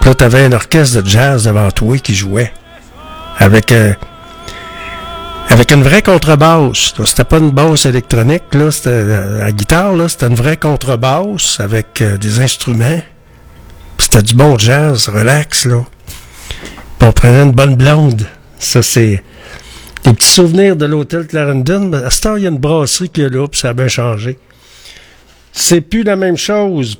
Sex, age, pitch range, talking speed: male, 60-79, 115-160 Hz, 175 wpm